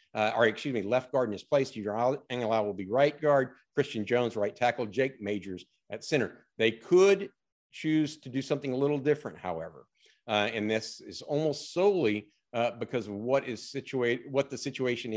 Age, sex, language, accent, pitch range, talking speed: 50-69, male, English, American, 110-140 Hz, 185 wpm